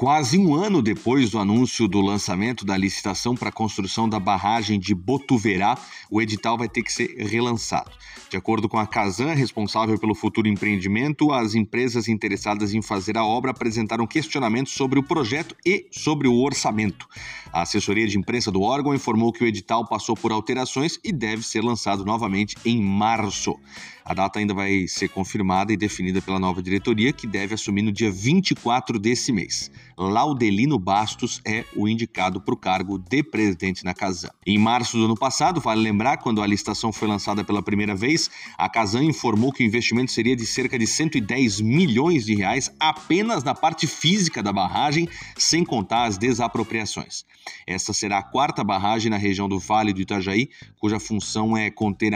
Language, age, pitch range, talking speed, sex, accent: Portuguese, 30-49, 100-125 Hz, 175 wpm, male, Brazilian